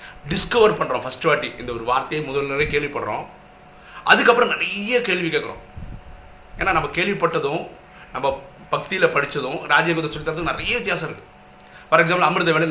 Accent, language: native, Tamil